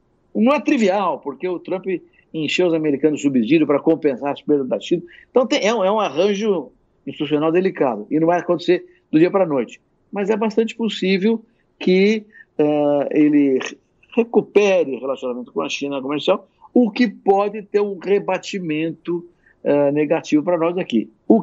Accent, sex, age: Brazilian, male, 60-79